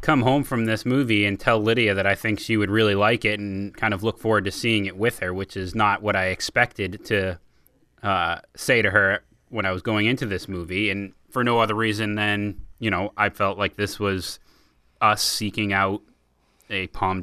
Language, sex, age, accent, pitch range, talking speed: English, male, 30-49, American, 95-115 Hz, 215 wpm